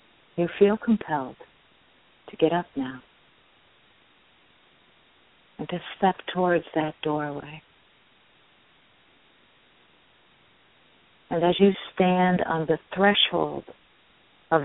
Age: 50-69